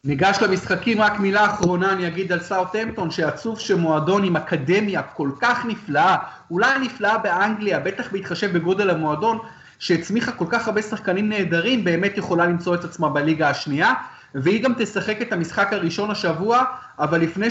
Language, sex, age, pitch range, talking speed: Hebrew, male, 30-49, 170-210 Hz, 155 wpm